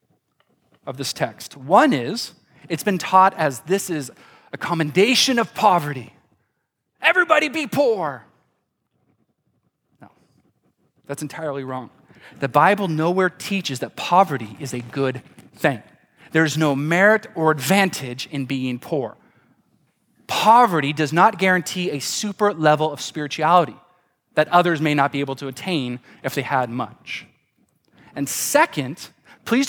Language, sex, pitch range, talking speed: English, male, 150-215 Hz, 130 wpm